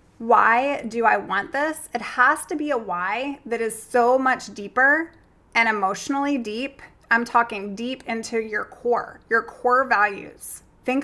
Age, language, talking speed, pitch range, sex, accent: 20-39, English, 160 wpm, 220-270 Hz, female, American